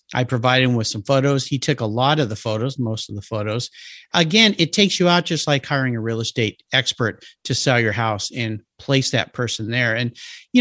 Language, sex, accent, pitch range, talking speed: English, male, American, 130-180 Hz, 225 wpm